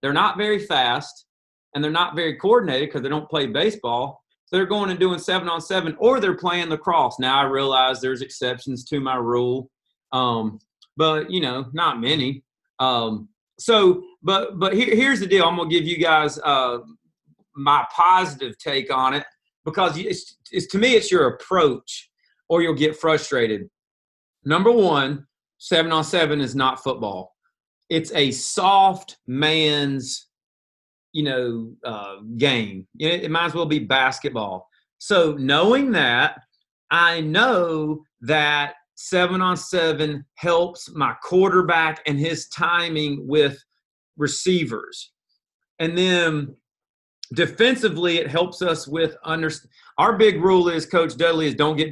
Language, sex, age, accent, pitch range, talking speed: English, male, 30-49, American, 135-175 Hz, 150 wpm